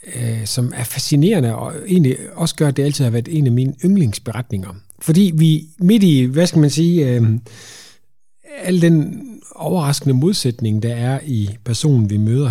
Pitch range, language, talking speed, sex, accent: 115-150 Hz, Danish, 170 wpm, male, native